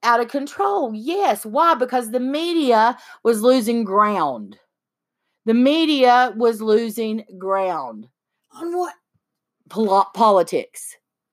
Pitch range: 205-260 Hz